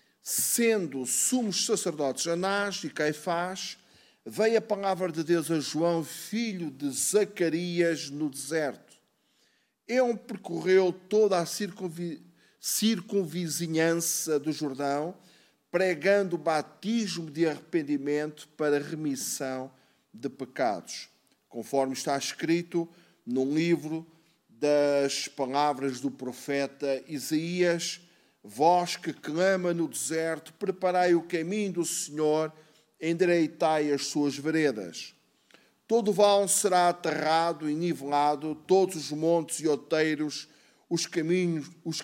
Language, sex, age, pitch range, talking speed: Portuguese, male, 50-69, 150-180 Hz, 105 wpm